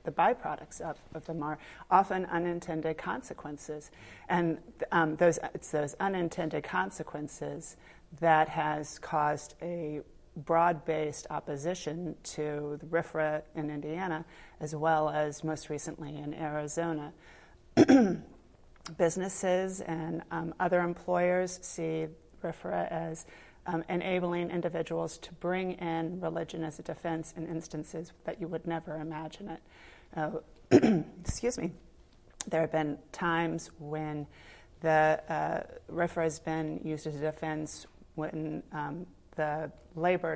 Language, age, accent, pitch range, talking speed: English, 40-59, American, 155-170 Hz, 120 wpm